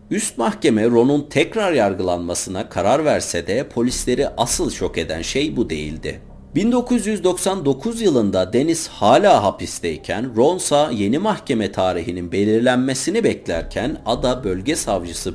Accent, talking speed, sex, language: native, 115 wpm, male, Turkish